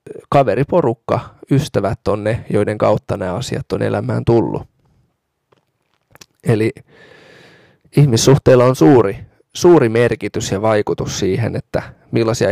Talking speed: 105 wpm